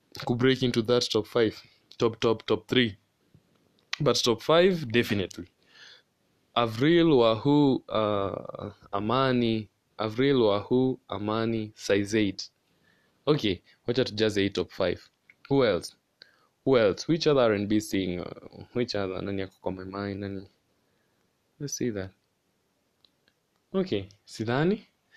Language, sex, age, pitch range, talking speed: English, male, 20-39, 105-130 Hz, 115 wpm